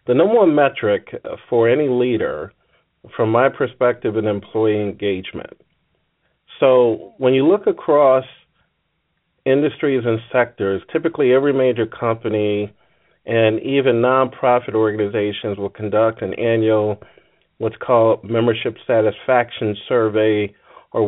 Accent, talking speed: American, 110 wpm